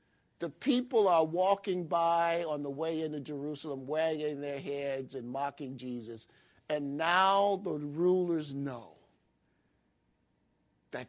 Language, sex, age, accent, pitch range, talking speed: English, male, 50-69, American, 135-185 Hz, 120 wpm